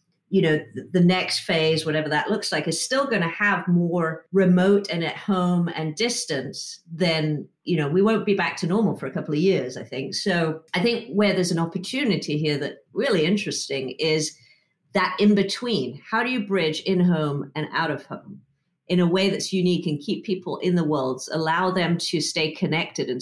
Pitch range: 150-195 Hz